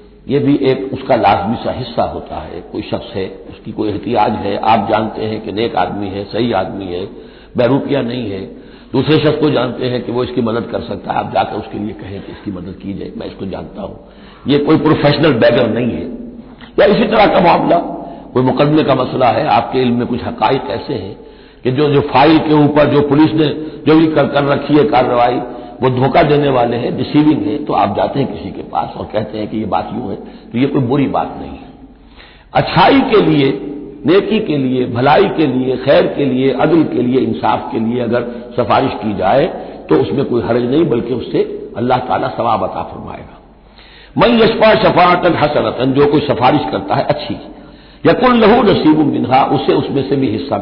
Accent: native